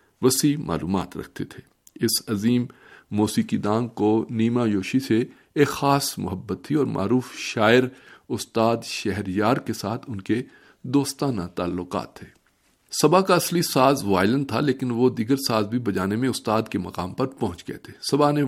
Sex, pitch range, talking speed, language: male, 105-135 Hz, 160 wpm, Urdu